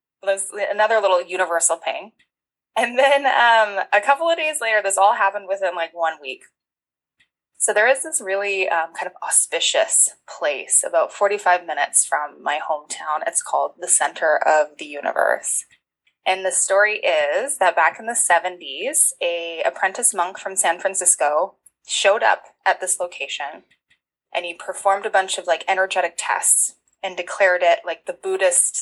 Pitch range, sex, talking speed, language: 165-205 Hz, female, 160 wpm, English